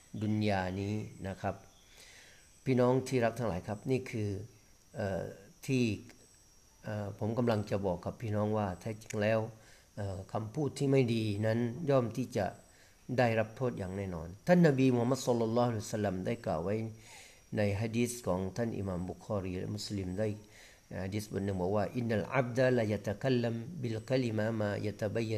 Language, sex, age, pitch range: Thai, male, 40-59, 100-125 Hz